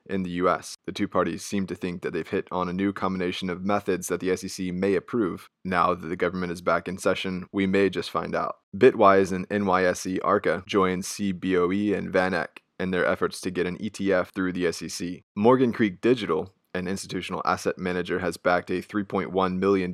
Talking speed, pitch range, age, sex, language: 200 wpm, 90-100 Hz, 20-39, male, English